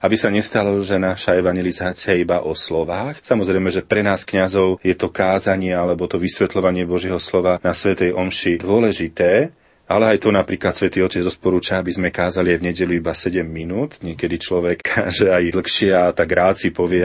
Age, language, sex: 30-49, Slovak, male